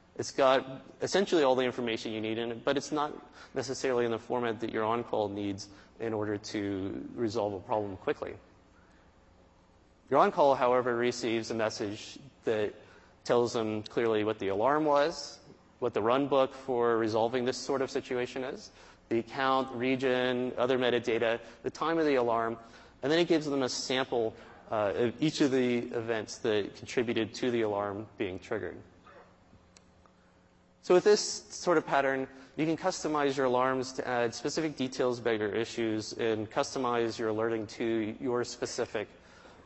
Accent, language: American, English